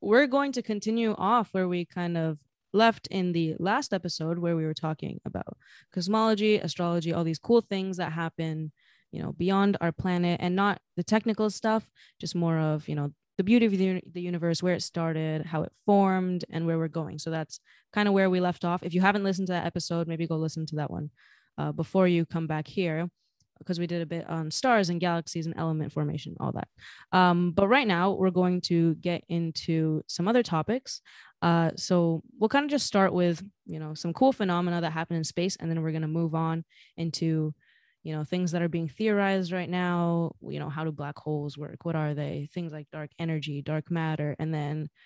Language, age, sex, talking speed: English, 20-39, female, 215 wpm